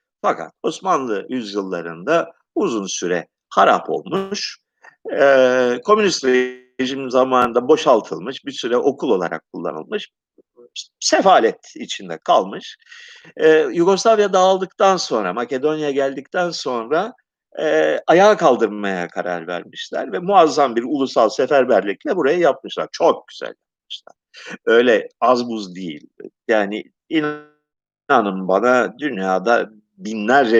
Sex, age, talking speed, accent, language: male, 50-69, 105 wpm, native, Turkish